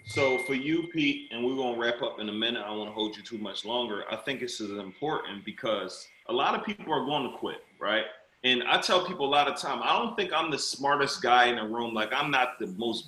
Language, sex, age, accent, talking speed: English, male, 30-49, American, 275 wpm